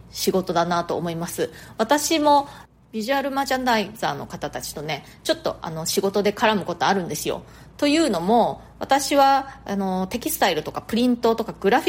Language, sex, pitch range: Japanese, female, 180-245 Hz